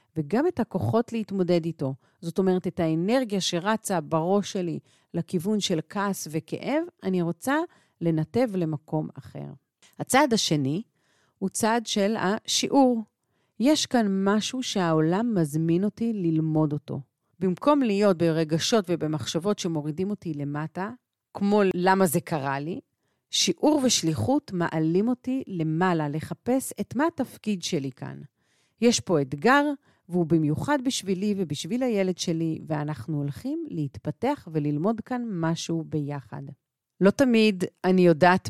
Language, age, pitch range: Hebrew, 40-59, 155-215 Hz